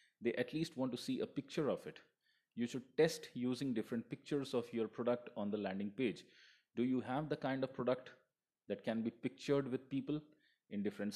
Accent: Indian